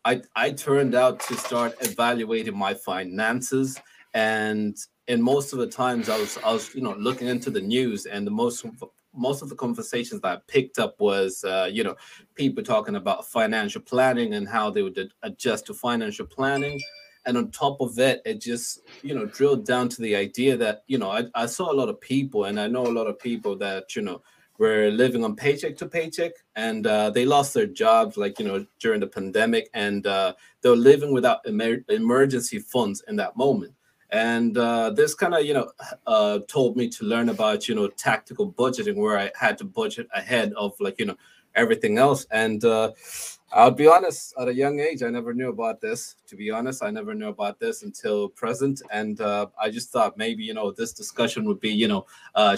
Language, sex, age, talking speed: English, male, 20-39, 210 wpm